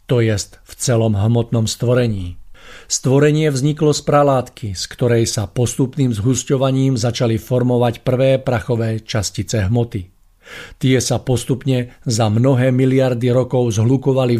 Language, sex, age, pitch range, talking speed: Slovak, male, 50-69, 115-135 Hz, 120 wpm